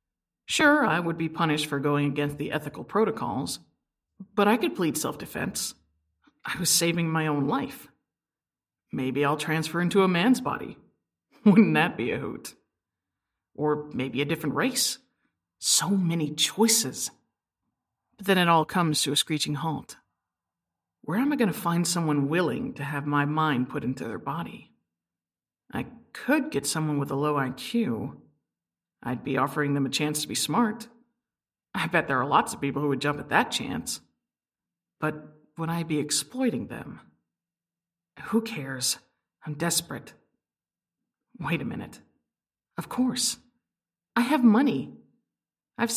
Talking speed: 150 wpm